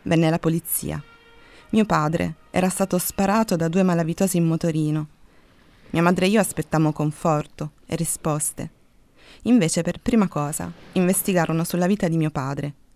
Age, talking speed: 30-49, 145 wpm